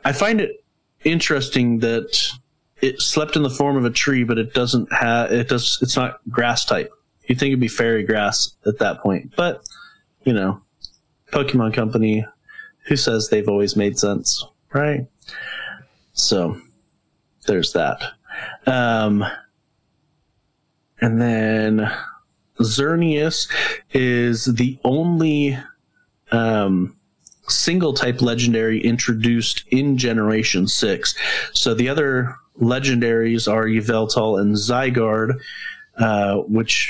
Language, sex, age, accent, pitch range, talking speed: English, male, 30-49, American, 110-140 Hz, 115 wpm